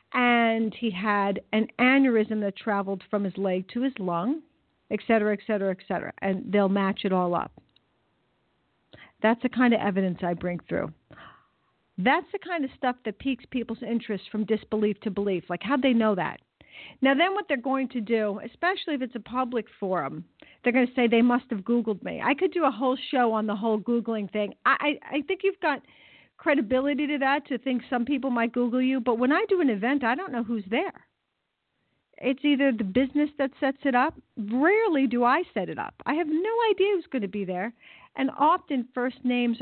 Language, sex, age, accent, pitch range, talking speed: English, female, 50-69, American, 215-285 Hz, 210 wpm